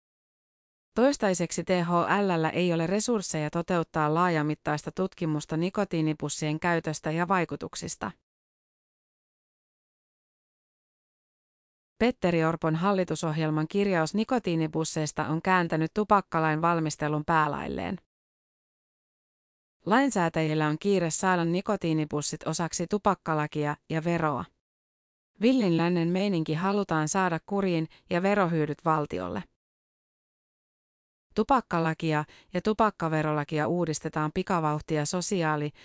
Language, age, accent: Finnish, 30-49, native